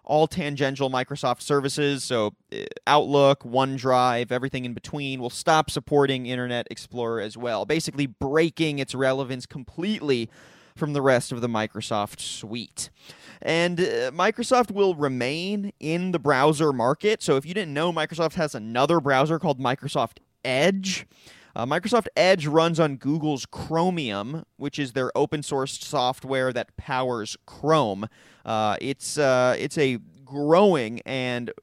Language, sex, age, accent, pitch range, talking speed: English, male, 30-49, American, 125-155 Hz, 140 wpm